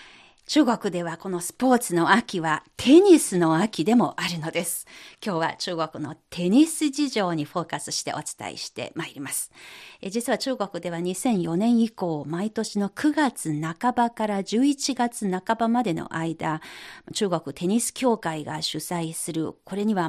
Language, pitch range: Japanese, 165-240 Hz